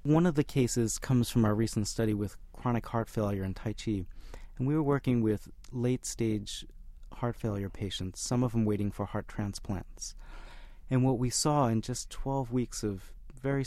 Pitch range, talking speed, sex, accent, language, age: 100-120 Hz, 185 wpm, male, American, English, 30-49